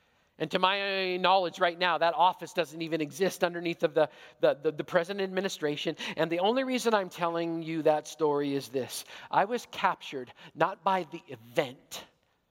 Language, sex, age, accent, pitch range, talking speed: English, male, 50-69, American, 155-185 Hz, 175 wpm